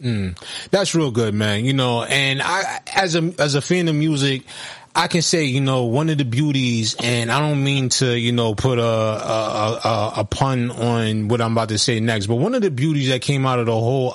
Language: English